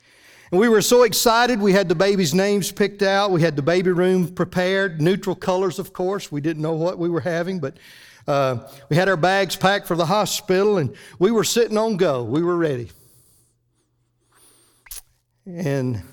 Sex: male